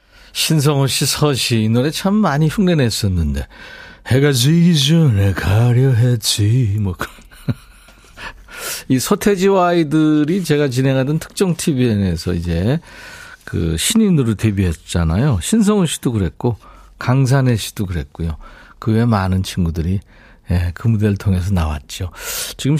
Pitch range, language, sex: 100-155 Hz, Korean, male